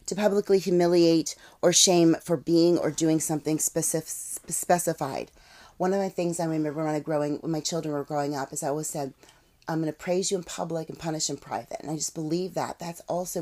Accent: American